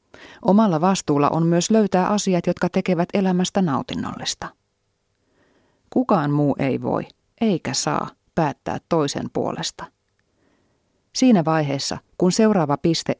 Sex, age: female, 30-49